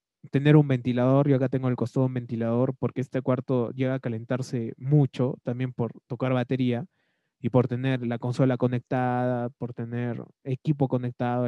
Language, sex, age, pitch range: Spanish, male, 20-39, 125-160 Hz